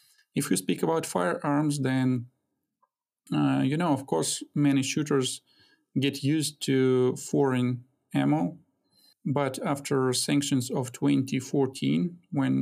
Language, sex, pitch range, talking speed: English, male, 125-145 Hz, 115 wpm